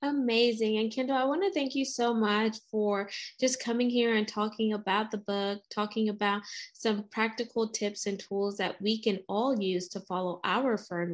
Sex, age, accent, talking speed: female, 20-39, American, 190 wpm